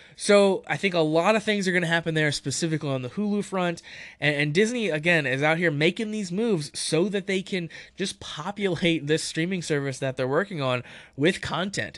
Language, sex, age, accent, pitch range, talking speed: English, male, 20-39, American, 130-175 Hz, 205 wpm